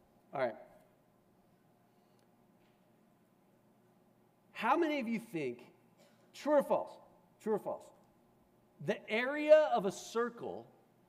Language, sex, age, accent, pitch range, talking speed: English, male, 40-59, American, 200-275 Hz, 95 wpm